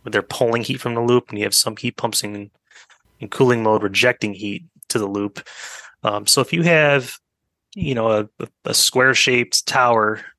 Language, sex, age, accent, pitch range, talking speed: English, male, 20-39, American, 110-125 Hz, 190 wpm